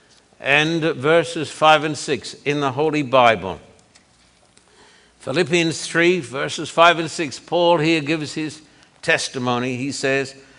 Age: 60-79